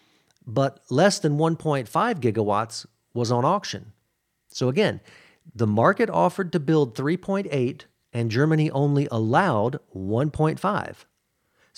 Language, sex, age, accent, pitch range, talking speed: English, male, 40-59, American, 110-155 Hz, 105 wpm